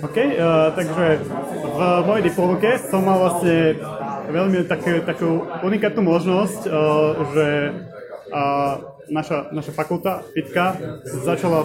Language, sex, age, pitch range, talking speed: Slovak, male, 20-39, 150-175 Hz, 120 wpm